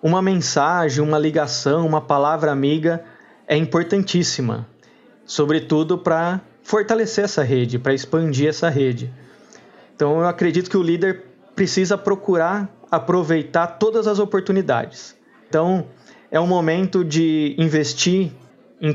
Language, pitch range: Portuguese, 150-190 Hz